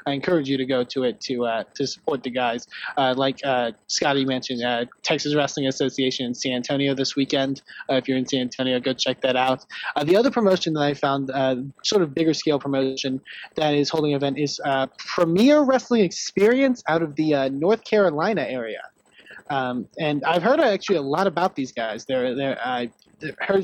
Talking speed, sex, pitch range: 205 wpm, male, 135-165 Hz